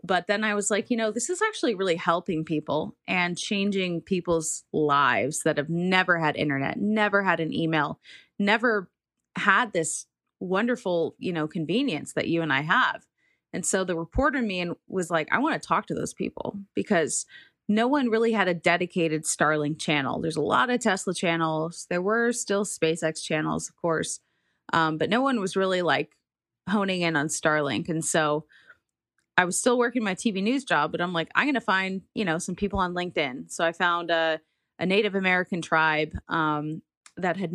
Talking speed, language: 190 wpm, English